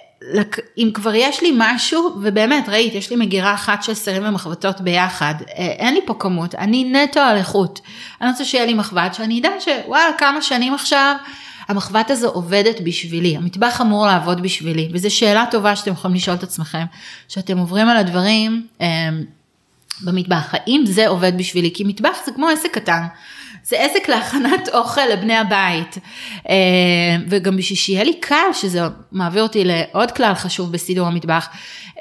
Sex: female